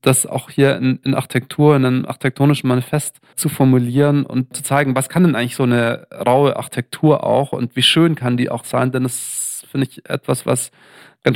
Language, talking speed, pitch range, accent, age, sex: German, 200 wpm, 135-160 Hz, German, 40-59, male